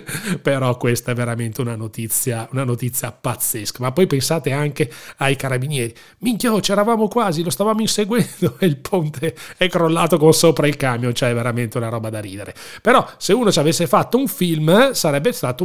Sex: male